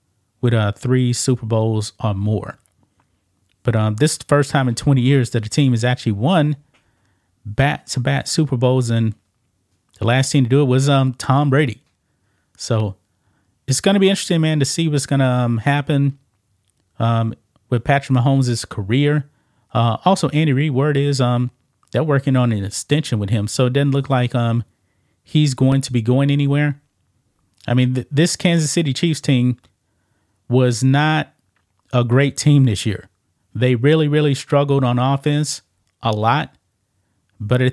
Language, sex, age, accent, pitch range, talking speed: English, male, 30-49, American, 110-145 Hz, 170 wpm